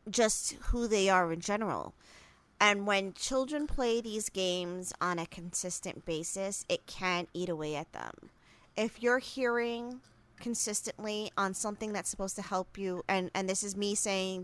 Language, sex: English, female